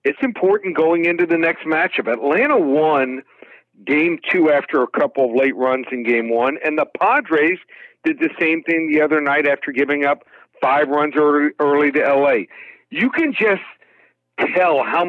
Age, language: 60-79, English